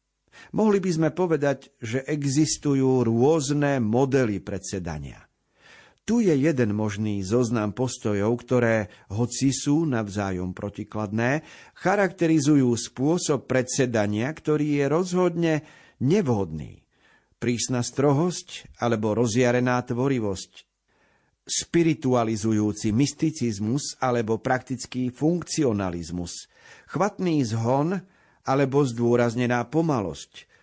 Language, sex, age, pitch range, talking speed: Slovak, male, 50-69, 115-150 Hz, 80 wpm